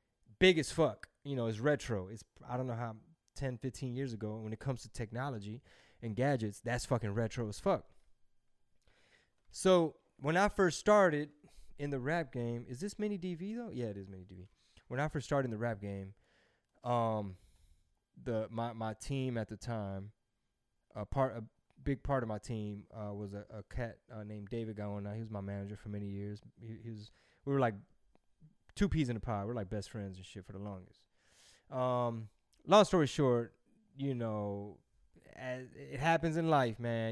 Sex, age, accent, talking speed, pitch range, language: male, 20-39, American, 190 wpm, 105-140 Hz, English